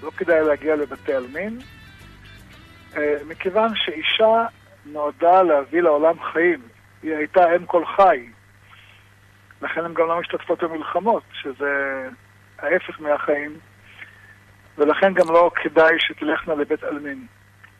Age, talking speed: 50-69, 110 wpm